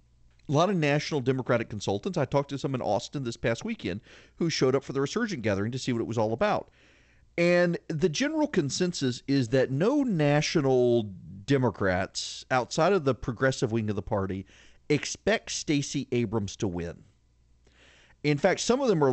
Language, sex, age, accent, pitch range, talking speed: English, male, 40-59, American, 105-145 Hz, 180 wpm